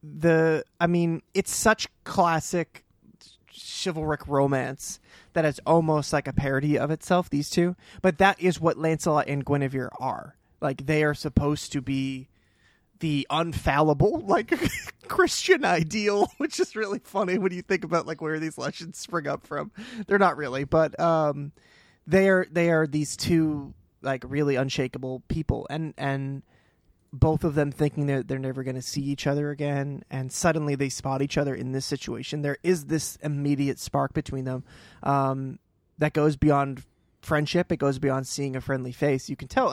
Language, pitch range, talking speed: English, 135-170 Hz, 170 wpm